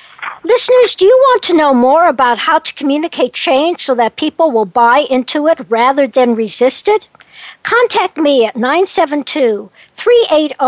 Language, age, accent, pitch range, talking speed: English, 60-79, American, 245-345 Hz, 150 wpm